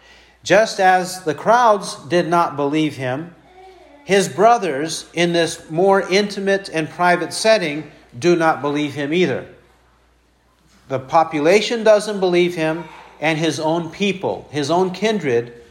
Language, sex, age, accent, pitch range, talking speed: English, male, 50-69, American, 155-195 Hz, 130 wpm